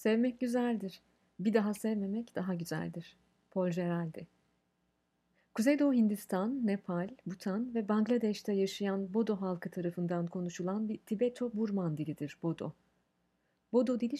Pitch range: 170-230 Hz